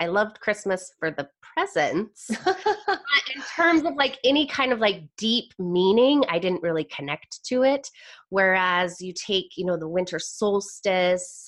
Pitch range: 170-230 Hz